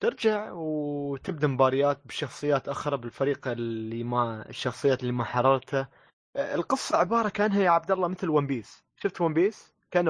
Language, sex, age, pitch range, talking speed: Arabic, male, 20-39, 130-165 Hz, 150 wpm